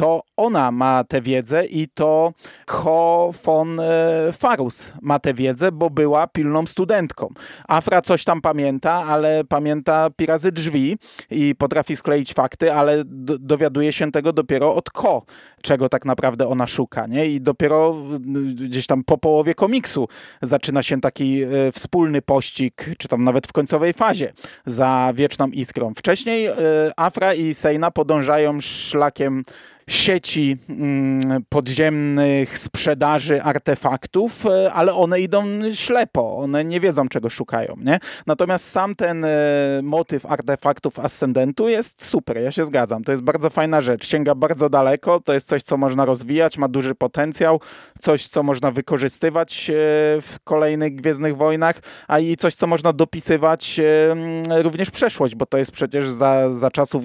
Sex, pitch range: male, 140-165 Hz